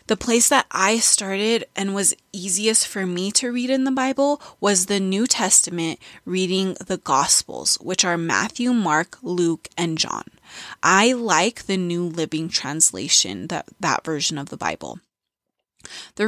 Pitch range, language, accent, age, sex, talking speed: 180-230 Hz, English, American, 20-39, female, 155 wpm